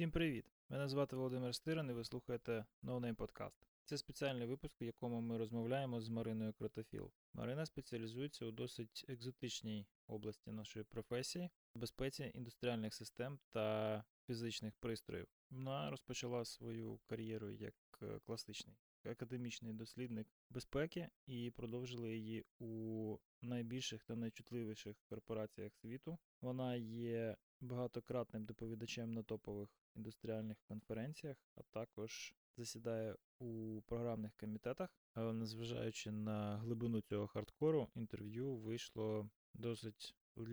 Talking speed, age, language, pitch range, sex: 110 wpm, 20-39, Ukrainian, 110-125 Hz, male